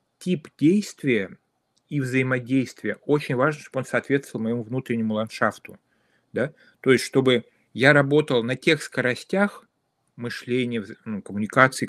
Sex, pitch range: male, 115-140 Hz